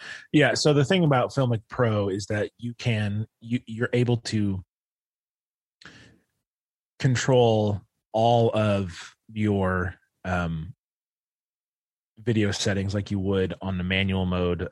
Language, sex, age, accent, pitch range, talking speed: English, male, 30-49, American, 85-105 Hz, 120 wpm